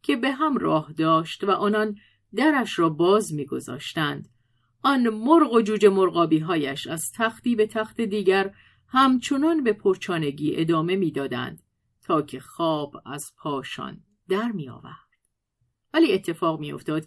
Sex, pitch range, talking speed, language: female, 155-205 Hz, 130 wpm, Persian